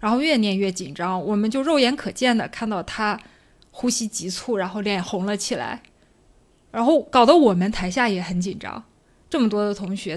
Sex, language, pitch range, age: female, Chinese, 190-230 Hz, 20-39